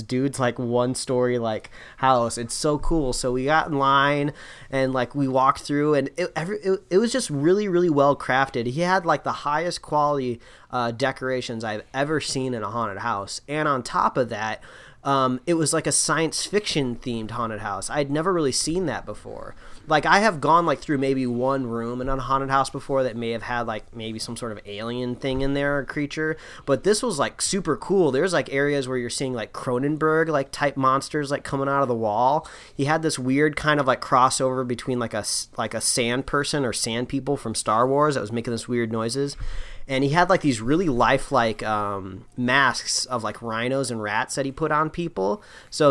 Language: English